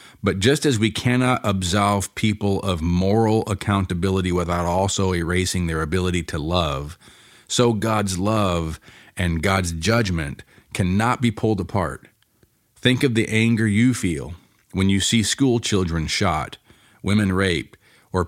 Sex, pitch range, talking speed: male, 90-115 Hz, 140 wpm